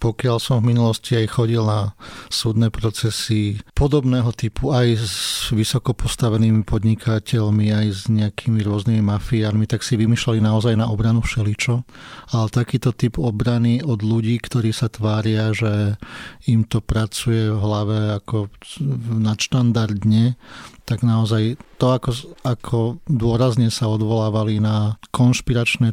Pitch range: 110-120 Hz